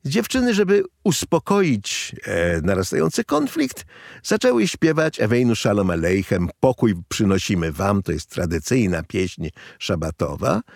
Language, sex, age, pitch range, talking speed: Polish, male, 50-69, 90-125 Hz, 105 wpm